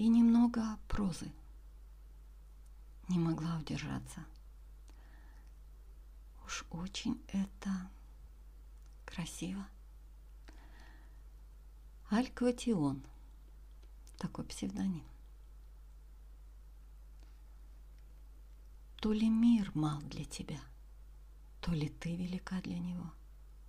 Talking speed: 65 wpm